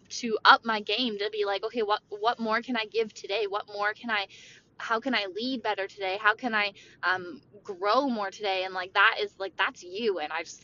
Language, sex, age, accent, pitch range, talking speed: English, female, 10-29, American, 210-300 Hz, 235 wpm